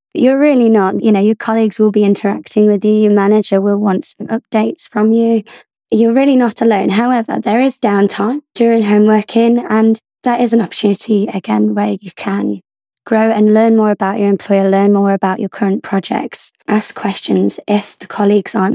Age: 20-39